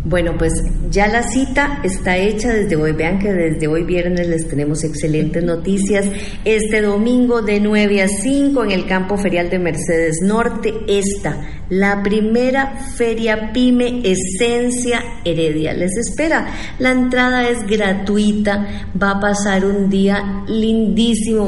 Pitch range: 165-210 Hz